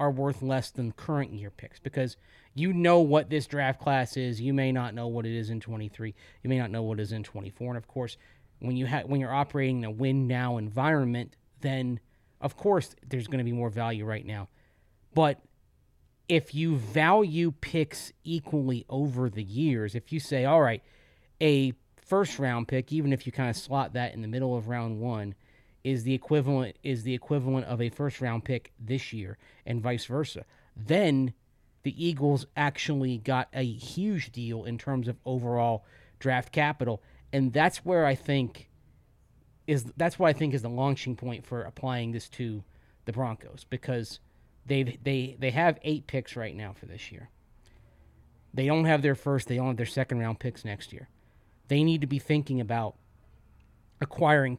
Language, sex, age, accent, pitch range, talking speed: English, male, 30-49, American, 115-140 Hz, 185 wpm